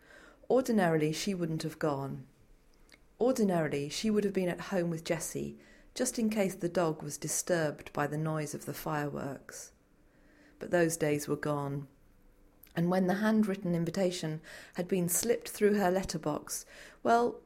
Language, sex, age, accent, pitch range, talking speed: English, female, 40-59, British, 155-205 Hz, 150 wpm